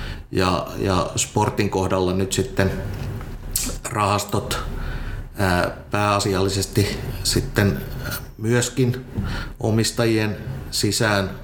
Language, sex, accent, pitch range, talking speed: Finnish, male, native, 95-110 Hz, 60 wpm